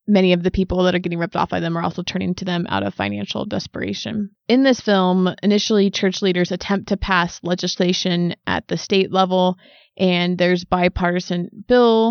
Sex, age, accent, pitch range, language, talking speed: female, 20-39, American, 175-200 Hz, English, 190 wpm